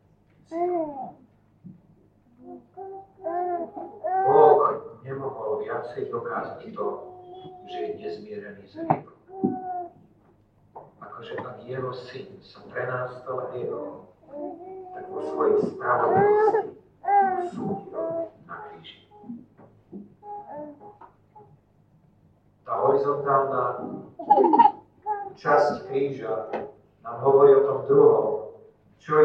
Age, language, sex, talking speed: 50-69, Slovak, male, 70 wpm